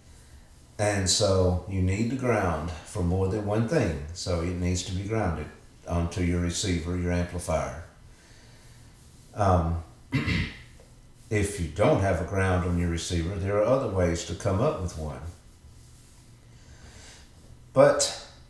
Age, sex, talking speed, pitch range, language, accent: 50-69, male, 135 wpm, 90-120 Hz, English, American